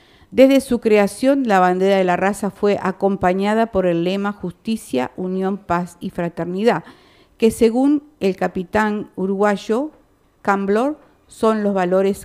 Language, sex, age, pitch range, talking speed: Spanish, female, 50-69, 175-215 Hz, 130 wpm